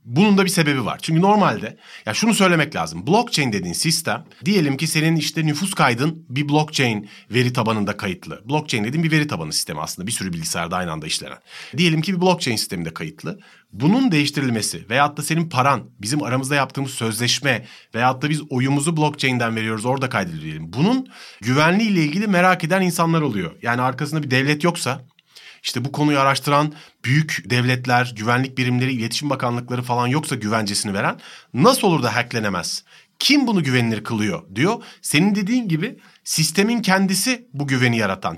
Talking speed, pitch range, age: 165 wpm, 125-180 Hz, 40-59